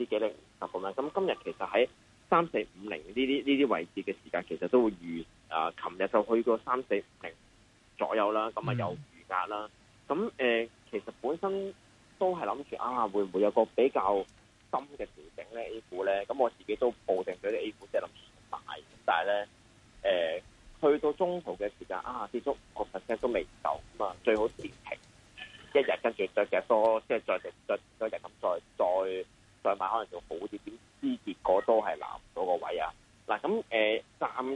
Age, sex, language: 30-49, male, Chinese